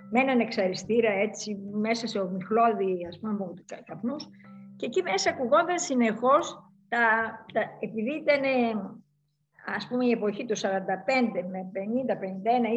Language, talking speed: Greek, 130 wpm